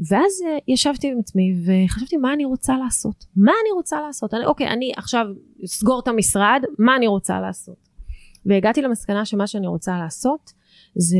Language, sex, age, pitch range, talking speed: Hebrew, female, 30-49, 185-250 Hz, 165 wpm